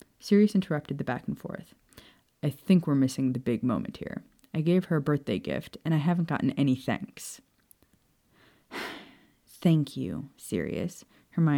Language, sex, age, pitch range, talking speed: English, female, 30-49, 140-175 Hz, 150 wpm